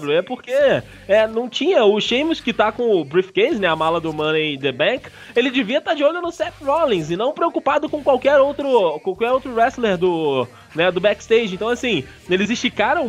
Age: 20-39